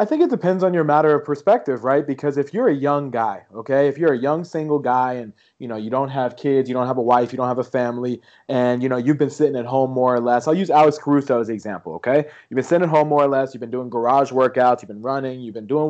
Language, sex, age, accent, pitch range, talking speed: English, male, 30-49, American, 125-150 Hz, 295 wpm